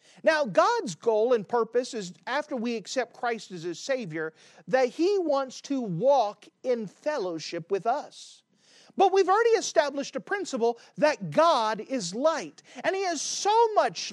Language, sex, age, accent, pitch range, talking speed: English, male, 40-59, American, 215-320 Hz, 155 wpm